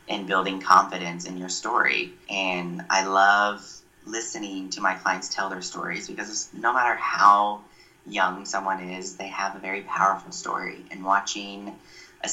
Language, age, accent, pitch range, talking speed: English, 30-49, American, 95-105 Hz, 155 wpm